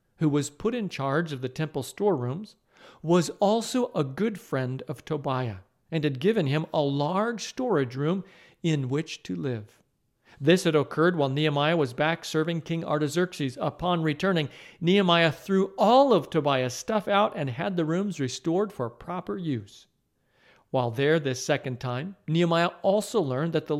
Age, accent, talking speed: 50-69, American, 165 wpm